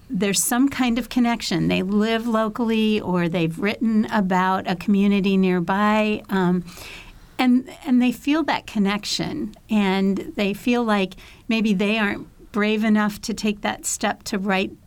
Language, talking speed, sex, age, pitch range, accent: English, 150 wpm, female, 50-69, 195-235 Hz, American